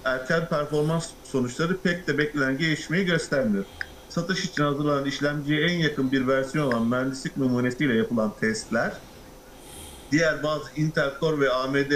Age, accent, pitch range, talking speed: 50-69, native, 130-165 Hz, 135 wpm